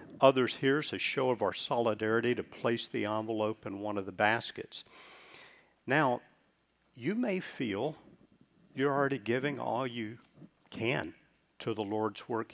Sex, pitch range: male, 110-140 Hz